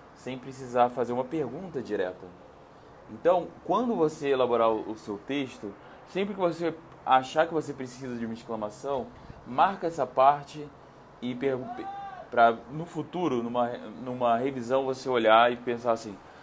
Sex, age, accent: male, 20-39, Brazilian